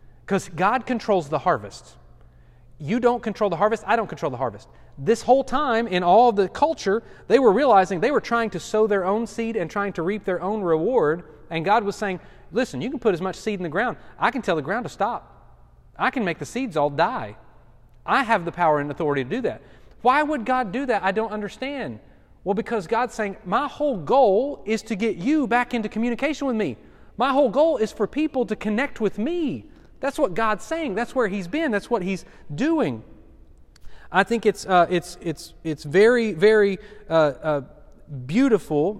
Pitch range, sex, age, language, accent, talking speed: 175-230 Hz, male, 30-49, English, American, 210 wpm